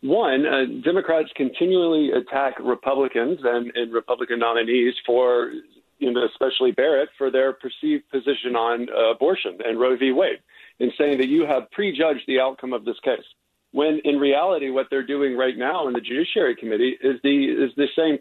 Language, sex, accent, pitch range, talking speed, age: English, male, American, 125-170 Hz, 180 wpm, 50-69